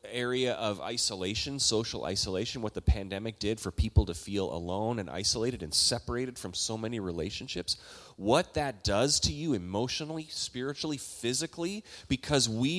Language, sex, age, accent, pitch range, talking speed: English, male, 30-49, American, 110-165 Hz, 150 wpm